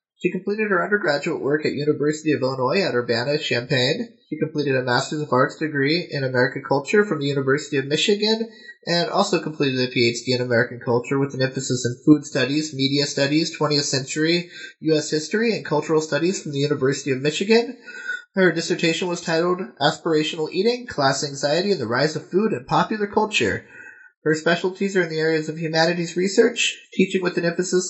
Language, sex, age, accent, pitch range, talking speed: English, male, 20-39, American, 145-185 Hz, 180 wpm